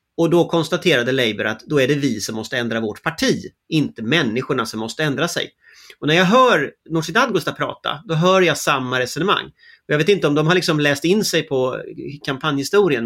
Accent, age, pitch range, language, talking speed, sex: Swedish, 30-49, 130-165 Hz, English, 200 wpm, male